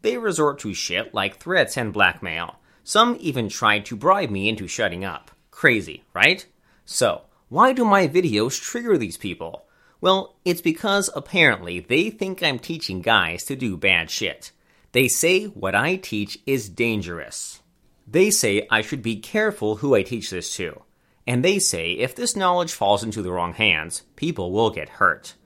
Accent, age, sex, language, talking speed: American, 30-49, male, English, 170 wpm